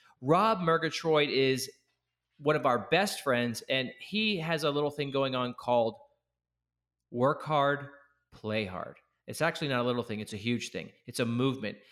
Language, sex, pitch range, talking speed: English, male, 120-155 Hz, 170 wpm